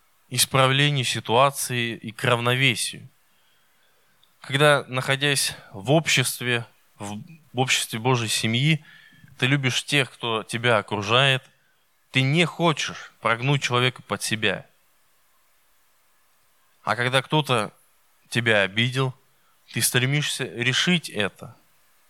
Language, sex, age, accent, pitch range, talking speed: Russian, male, 20-39, native, 115-145 Hz, 95 wpm